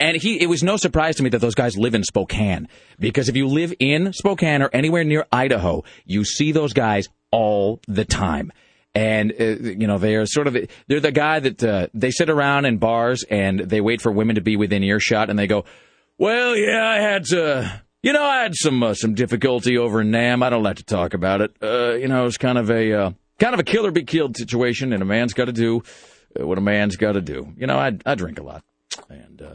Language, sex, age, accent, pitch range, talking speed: English, male, 40-59, American, 95-135 Hz, 230 wpm